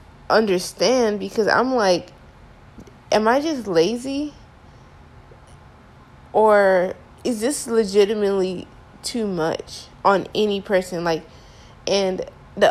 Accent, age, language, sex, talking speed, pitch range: American, 20-39, English, female, 95 wpm, 185-230 Hz